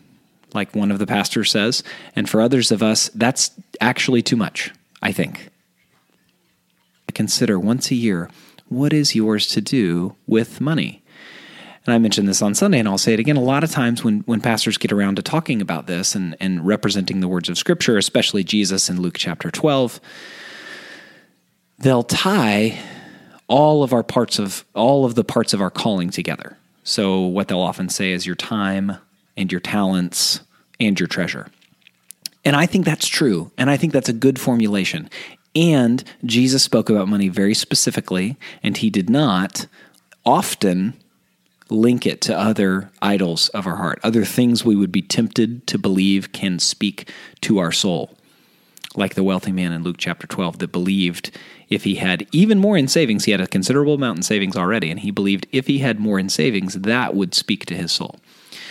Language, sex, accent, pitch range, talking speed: English, male, American, 95-125 Hz, 185 wpm